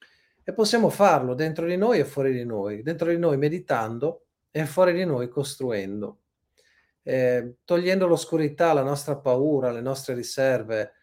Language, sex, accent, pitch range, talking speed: Italian, male, native, 120-155 Hz, 145 wpm